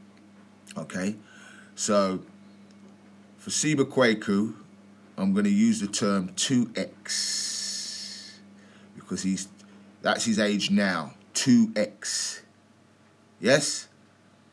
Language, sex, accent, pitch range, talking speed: English, male, British, 100-110 Hz, 85 wpm